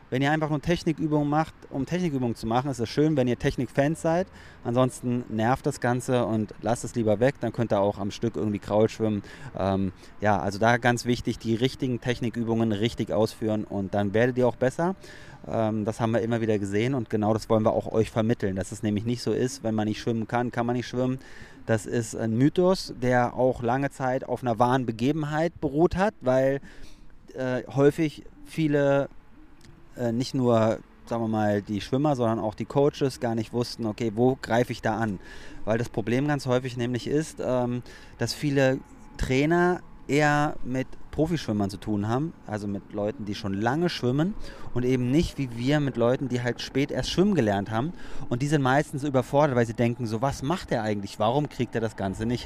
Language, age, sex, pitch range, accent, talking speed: German, 30-49, male, 110-140 Hz, German, 200 wpm